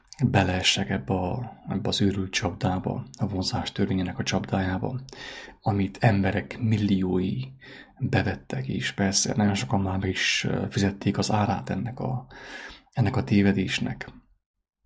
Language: English